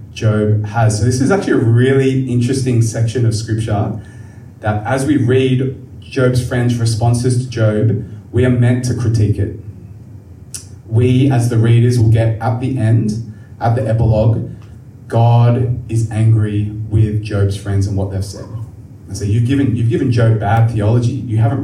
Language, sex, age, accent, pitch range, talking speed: English, male, 20-39, Australian, 110-125 Hz, 165 wpm